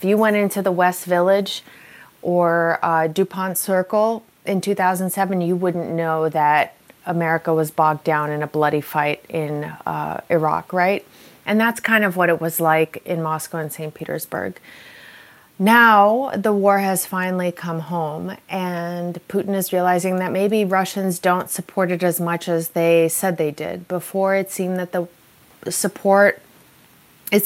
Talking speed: 155 wpm